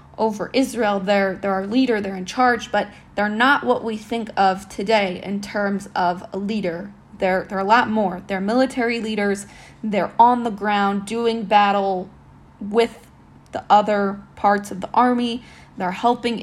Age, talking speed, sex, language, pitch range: 20-39, 165 wpm, female, English, 200-235 Hz